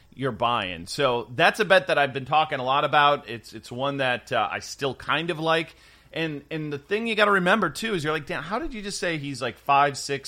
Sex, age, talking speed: male, 30-49, 265 wpm